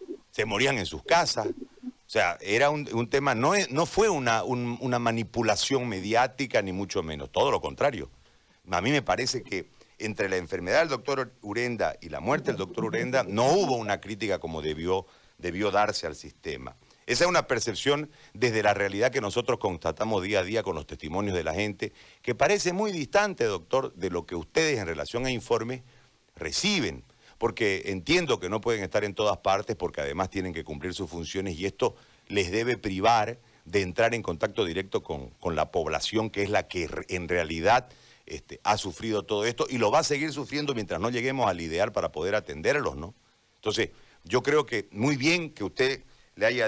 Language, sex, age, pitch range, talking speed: Spanish, male, 50-69, 100-145 Hz, 195 wpm